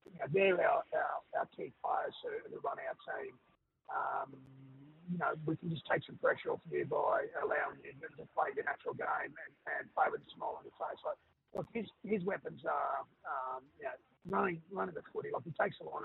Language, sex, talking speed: English, male, 225 wpm